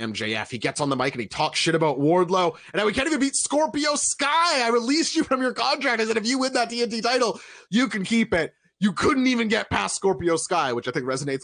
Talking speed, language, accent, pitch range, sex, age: 255 wpm, English, American, 130-225 Hz, male, 30-49